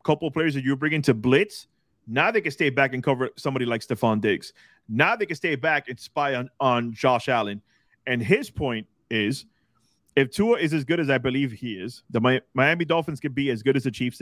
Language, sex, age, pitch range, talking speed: English, male, 30-49, 120-150 Hz, 230 wpm